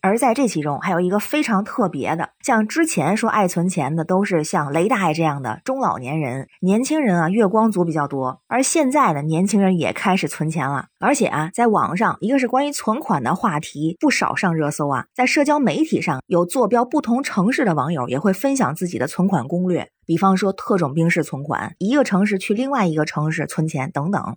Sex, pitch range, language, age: female, 160-225 Hz, Chinese, 20-39